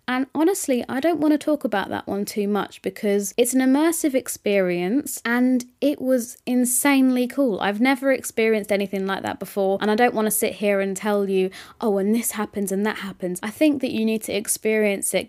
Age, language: 20-39, English